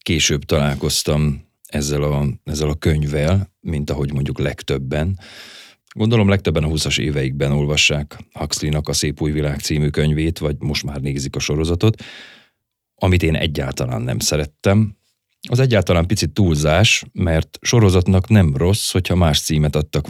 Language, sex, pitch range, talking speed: Hungarian, male, 75-95 Hz, 140 wpm